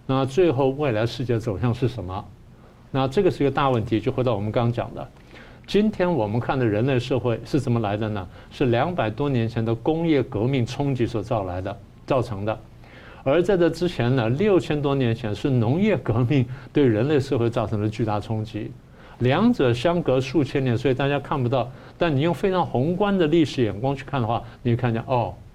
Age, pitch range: 60-79, 115-140 Hz